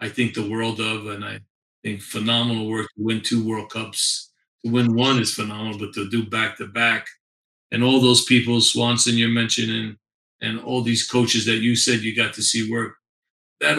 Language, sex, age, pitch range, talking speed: English, male, 40-59, 110-120 Hz, 195 wpm